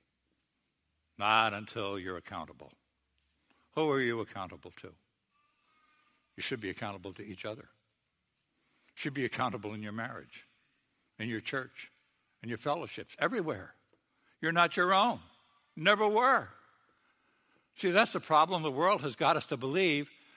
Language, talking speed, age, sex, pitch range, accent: English, 140 wpm, 60-79, male, 115-160 Hz, American